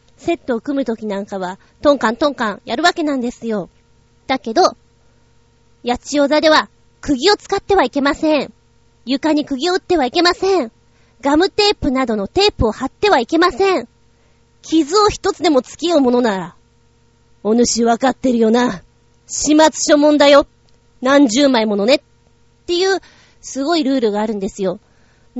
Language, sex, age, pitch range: Japanese, female, 30-49, 215-310 Hz